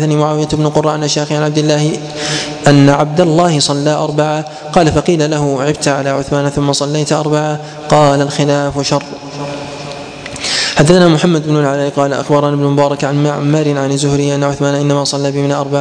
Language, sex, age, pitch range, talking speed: Arabic, male, 20-39, 145-155 Hz, 165 wpm